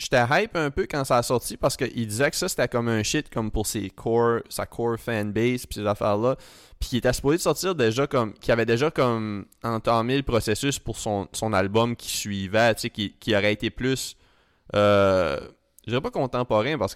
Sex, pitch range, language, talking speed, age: male, 100-115 Hz, French, 210 wpm, 20-39